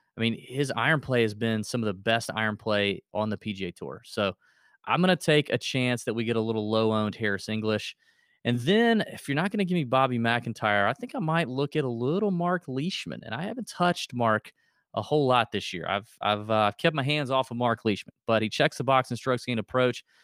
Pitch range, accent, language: 110-145 Hz, American, English